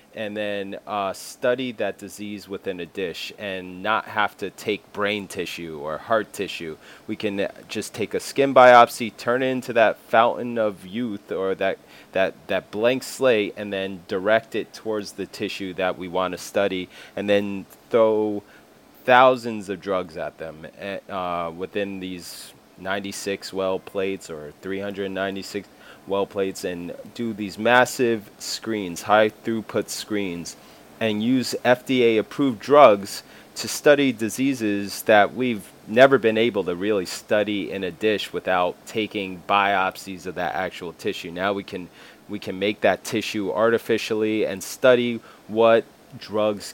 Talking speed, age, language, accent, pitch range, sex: 150 wpm, 30-49, English, American, 95-115 Hz, male